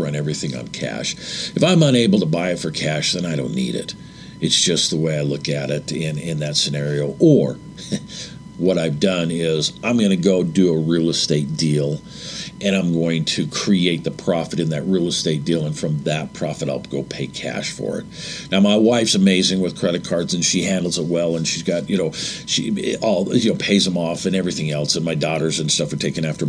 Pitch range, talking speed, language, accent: 85-130 Hz, 225 wpm, English, American